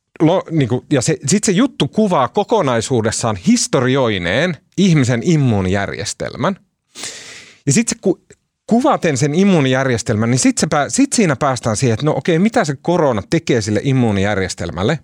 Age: 30-49